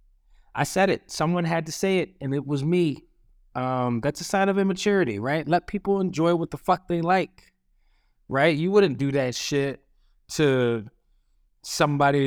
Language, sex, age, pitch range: English, male, 20-39, 100-155 Hz